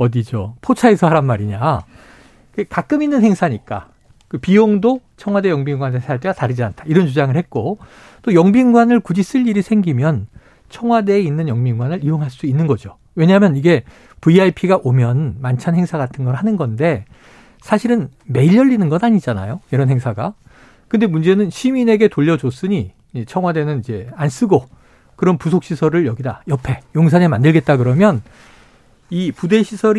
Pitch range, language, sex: 130-205 Hz, Korean, male